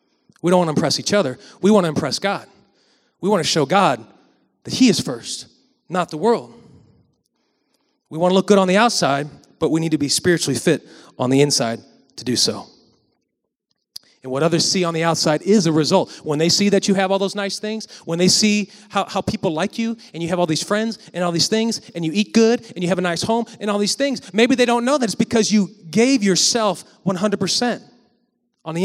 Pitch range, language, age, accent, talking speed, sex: 170-230 Hz, English, 30-49, American, 230 wpm, male